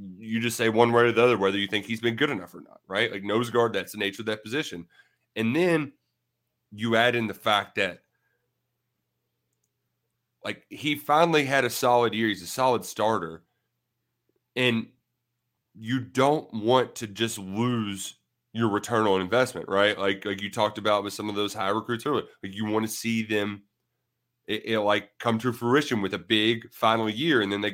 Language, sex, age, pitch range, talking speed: English, male, 30-49, 100-125 Hz, 195 wpm